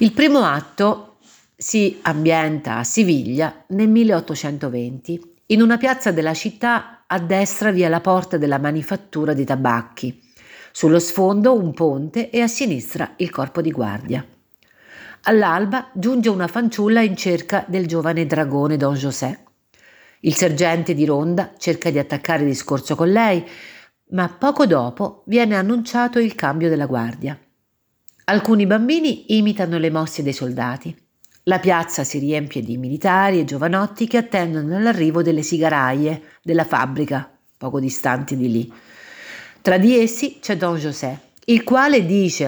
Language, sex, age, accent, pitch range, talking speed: Italian, female, 50-69, native, 145-210 Hz, 140 wpm